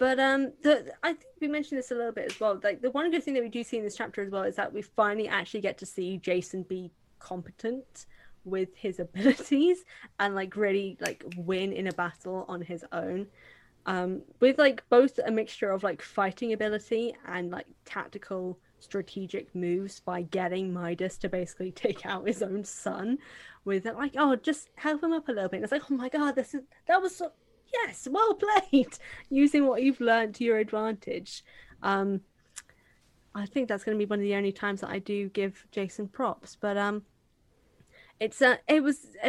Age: 10-29